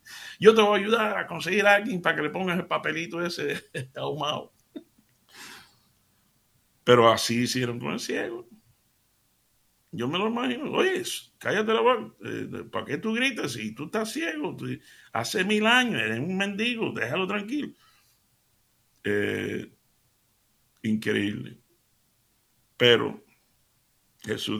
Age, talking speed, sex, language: 60-79, 125 wpm, male, Spanish